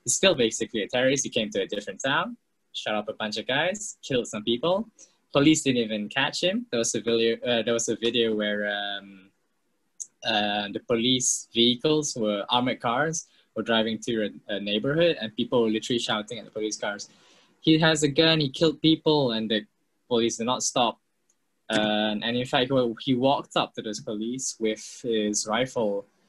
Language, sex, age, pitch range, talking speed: English, male, 10-29, 110-130 Hz, 190 wpm